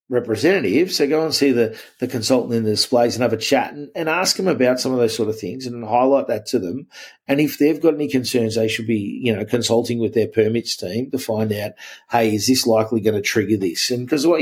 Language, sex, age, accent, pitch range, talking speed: English, male, 40-59, Australian, 110-130 Hz, 255 wpm